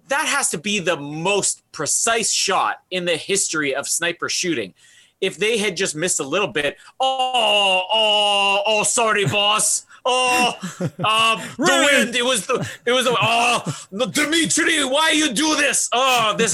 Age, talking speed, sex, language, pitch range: 30-49, 165 wpm, male, English, 150-230 Hz